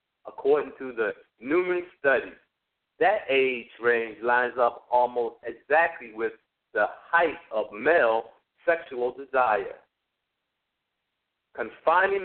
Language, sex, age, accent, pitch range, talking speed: English, male, 50-69, American, 130-185 Hz, 100 wpm